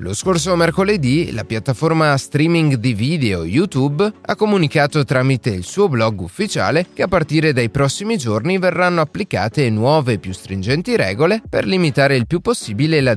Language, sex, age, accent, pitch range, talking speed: Italian, male, 30-49, native, 105-160 Hz, 160 wpm